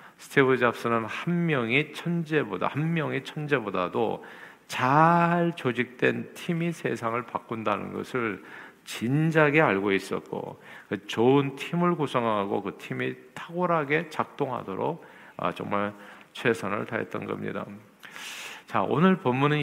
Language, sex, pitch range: Korean, male, 110-150 Hz